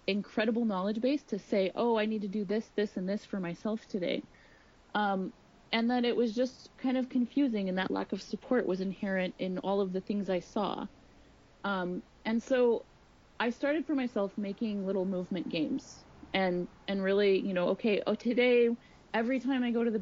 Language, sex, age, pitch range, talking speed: English, female, 30-49, 190-230 Hz, 195 wpm